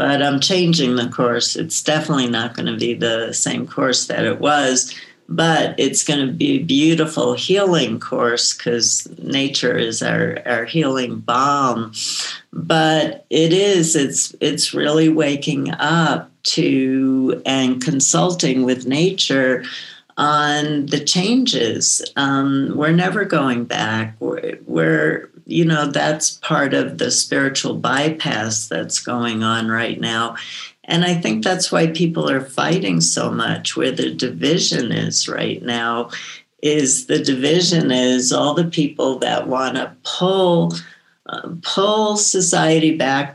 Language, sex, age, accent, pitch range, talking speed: English, female, 60-79, American, 125-165 Hz, 135 wpm